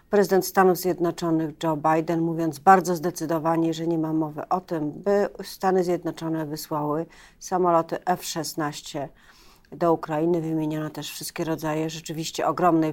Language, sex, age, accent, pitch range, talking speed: Polish, female, 40-59, native, 155-180 Hz, 130 wpm